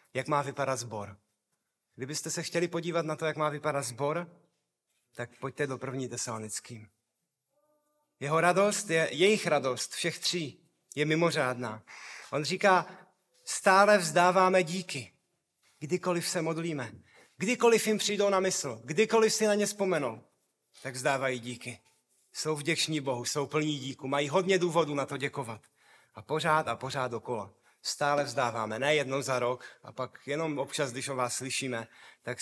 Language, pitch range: Czech, 135-175 Hz